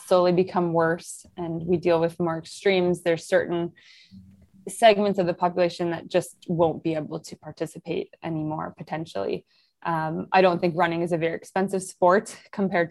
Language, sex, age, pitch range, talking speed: English, female, 20-39, 165-175 Hz, 165 wpm